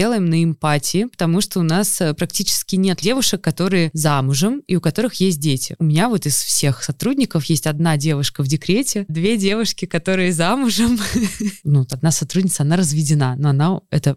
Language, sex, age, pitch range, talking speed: Russian, female, 20-39, 155-190 Hz, 165 wpm